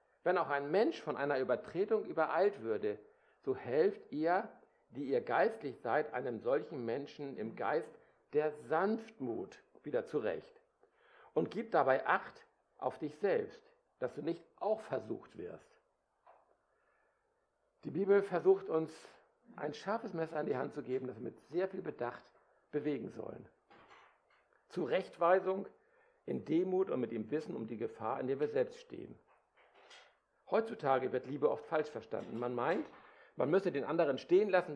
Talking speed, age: 150 wpm, 60-79